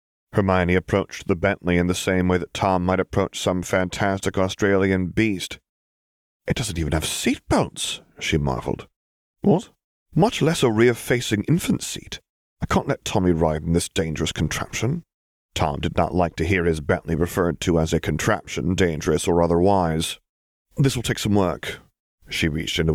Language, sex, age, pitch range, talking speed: English, male, 30-49, 85-115 Hz, 165 wpm